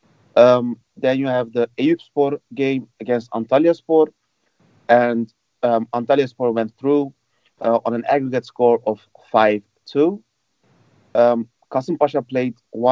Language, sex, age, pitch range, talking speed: English, male, 30-49, 115-130 Hz, 130 wpm